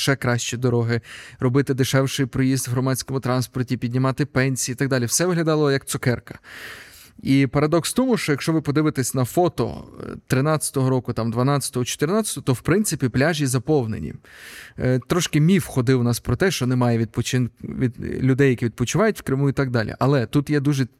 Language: Ukrainian